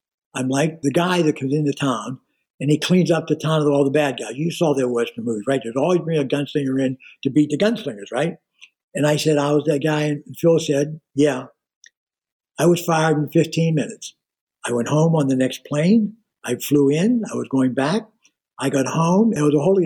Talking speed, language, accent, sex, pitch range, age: 225 wpm, English, American, male, 135-170 Hz, 60-79